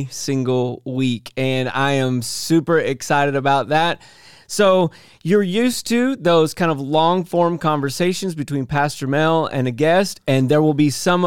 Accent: American